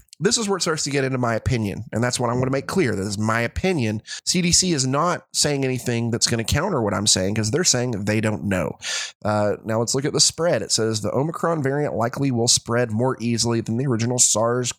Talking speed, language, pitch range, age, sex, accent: 245 wpm, English, 110-135 Hz, 30-49, male, American